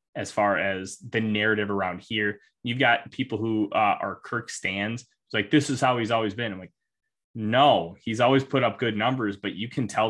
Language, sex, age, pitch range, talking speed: English, male, 20-39, 105-125 Hz, 215 wpm